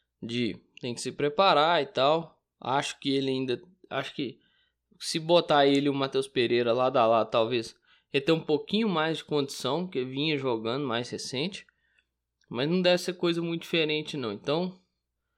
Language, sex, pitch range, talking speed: Portuguese, male, 130-200 Hz, 170 wpm